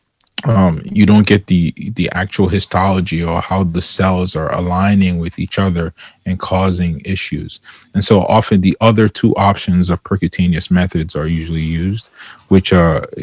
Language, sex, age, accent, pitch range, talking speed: English, male, 20-39, American, 85-100 Hz, 160 wpm